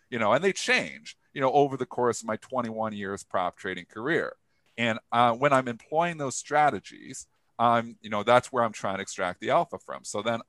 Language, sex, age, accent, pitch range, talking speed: English, male, 40-59, American, 110-135 Hz, 215 wpm